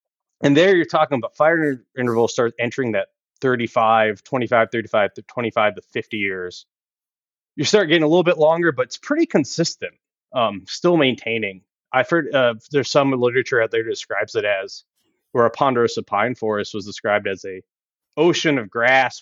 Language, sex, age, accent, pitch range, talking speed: English, male, 30-49, American, 115-155 Hz, 175 wpm